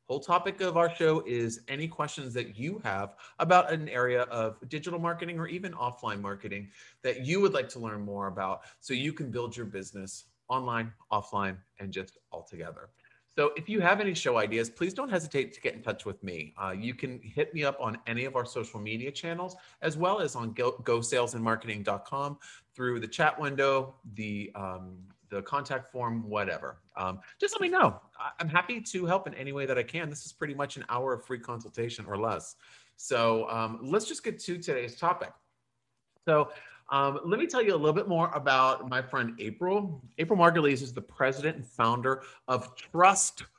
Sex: male